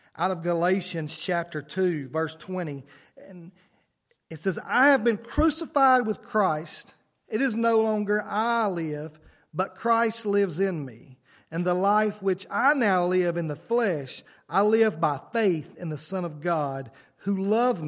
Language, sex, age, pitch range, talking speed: English, male, 40-59, 150-200 Hz, 160 wpm